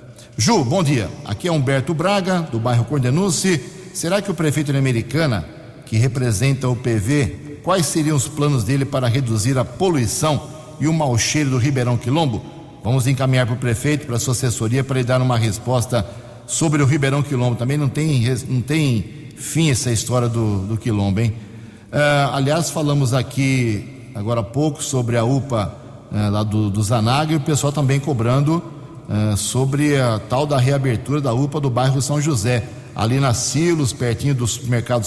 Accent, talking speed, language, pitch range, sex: Brazilian, 170 wpm, Portuguese, 120-150 Hz, male